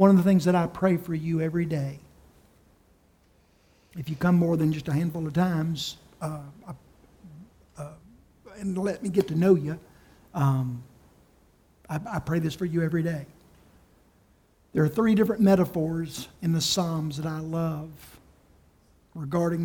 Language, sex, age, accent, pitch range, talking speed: English, male, 50-69, American, 125-180 Hz, 160 wpm